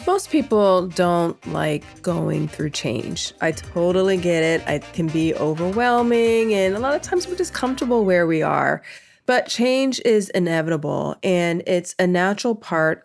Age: 30-49